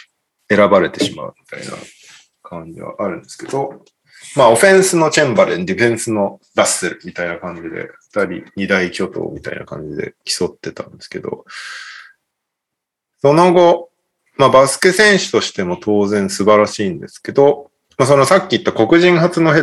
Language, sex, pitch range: Japanese, male, 110-180 Hz